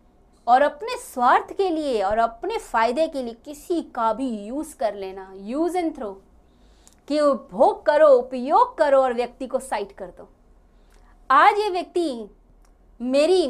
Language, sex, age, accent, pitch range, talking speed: Hindi, female, 30-49, native, 210-300 Hz, 150 wpm